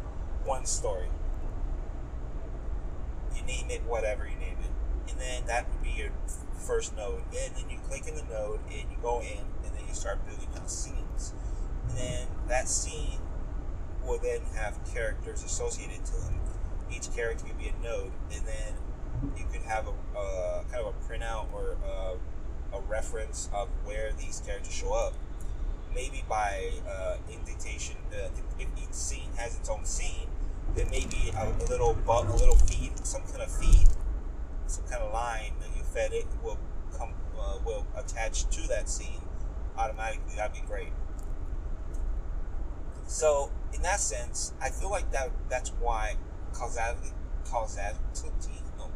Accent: American